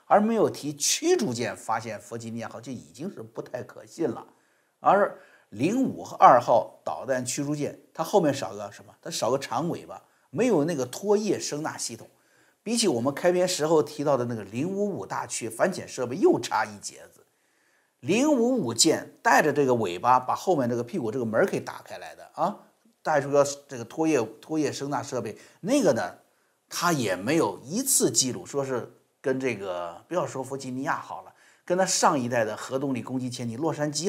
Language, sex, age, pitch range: Chinese, male, 50-69, 125-180 Hz